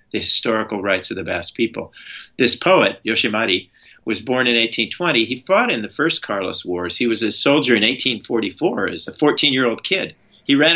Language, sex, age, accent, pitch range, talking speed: English, male, 50-69, American, 115-145 Hz, 195 wpm